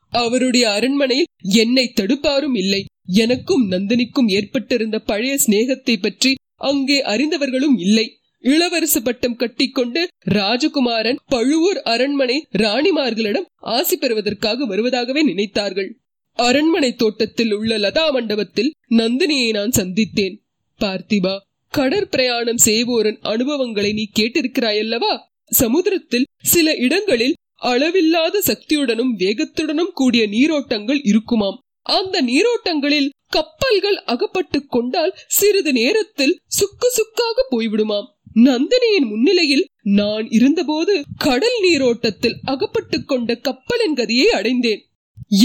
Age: 20-39